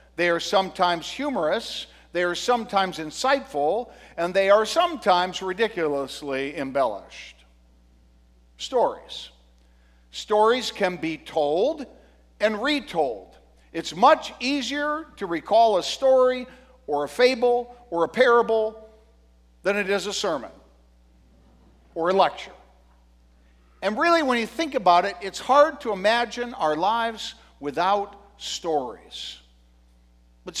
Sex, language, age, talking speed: male, English, 60-79, 115 wpm